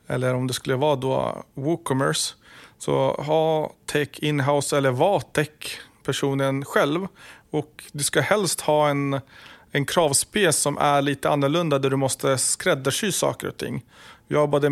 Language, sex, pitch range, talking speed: Swedish, male, 135-155 Hz, 145 wpm